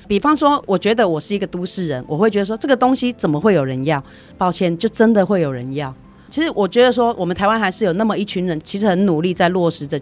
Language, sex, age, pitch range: Chinese, female, 30-49, 155-205 Hz